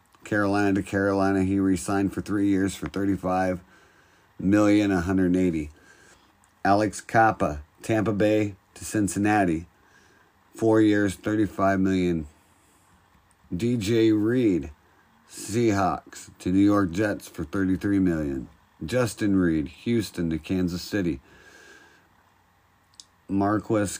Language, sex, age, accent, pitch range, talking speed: English, male, 50-69, American, 90-110 Hz, 100 wpm